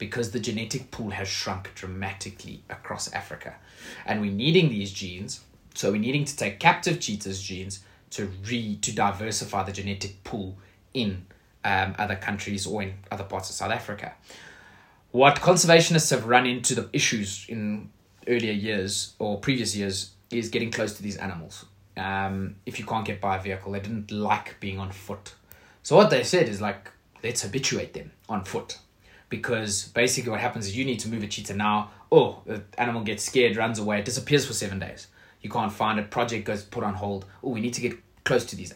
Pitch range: 100-115 Hz